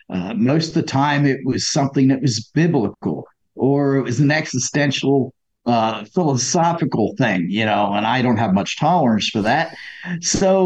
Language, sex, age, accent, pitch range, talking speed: English, male, 50-69, American, 125-175 Hz, 170 wpm